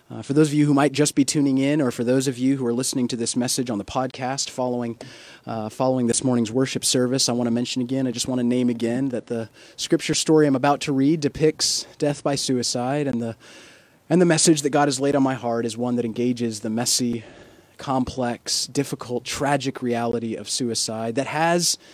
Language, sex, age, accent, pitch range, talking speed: English, male, 30-49, American, 120-140 Hz, 220 wpm